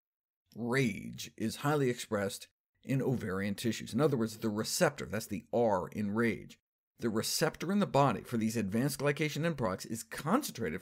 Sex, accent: male, American